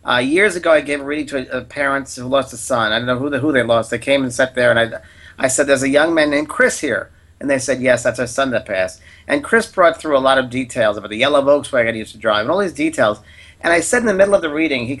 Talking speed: 315 wpm